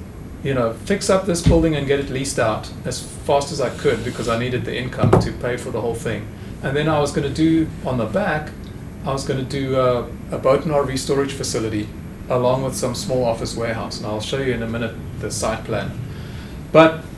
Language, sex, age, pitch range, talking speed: English, male, 40-59, 120-160 Hz, 230 wpm